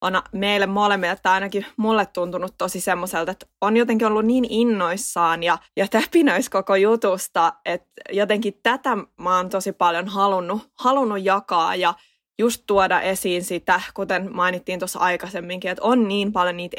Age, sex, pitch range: 20-39, female, 185-230 Hz